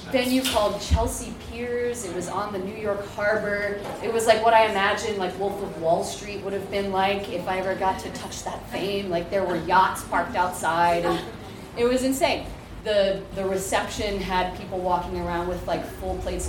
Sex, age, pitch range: female, 30-49, 175-215 Hz